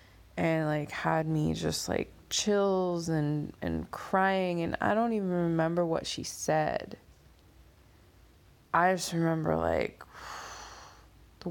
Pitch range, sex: 105-170 Hz, female